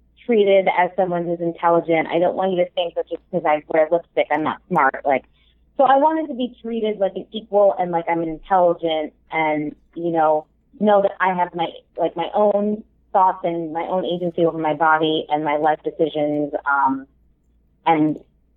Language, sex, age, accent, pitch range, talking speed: English, female, 30-49, American, 160-215 Hz, 190 wpm